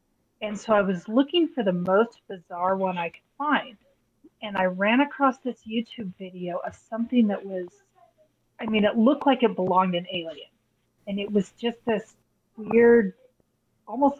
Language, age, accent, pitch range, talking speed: English, 30-49, American, 190-245 Hz, 170 wpm